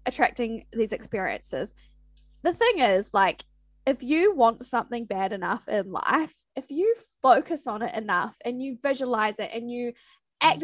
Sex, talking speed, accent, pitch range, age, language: female, 160 wpm, Australian, 210-270 Hz, 10-29, English